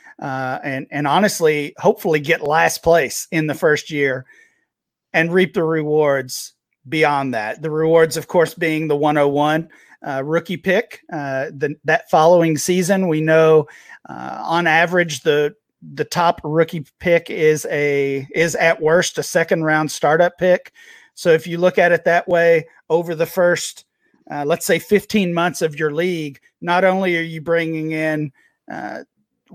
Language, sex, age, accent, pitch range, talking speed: English, male, 40-59, American, 155-180 Hz, 160 wpm